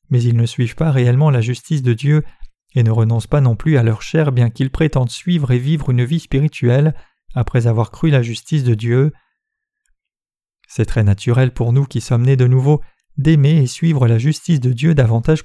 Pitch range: 120-145 Hz